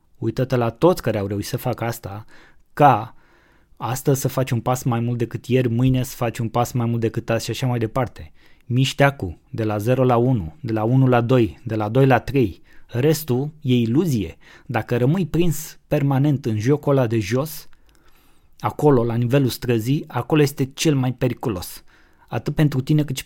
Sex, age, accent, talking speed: male, 20-39, native, 190 wpm